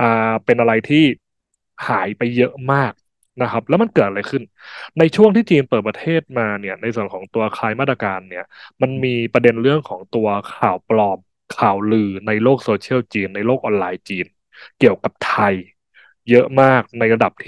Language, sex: English, male